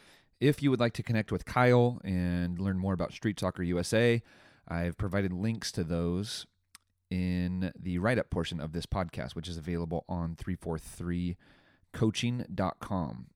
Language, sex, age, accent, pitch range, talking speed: English, male, 30-49, American, 85-105 Hz, 145 wpm